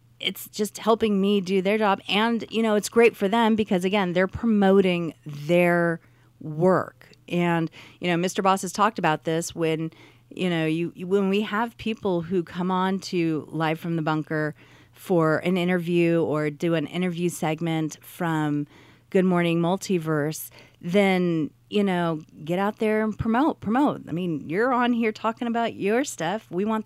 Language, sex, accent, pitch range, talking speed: English, female, American, 155-210 Hz, 170 wpm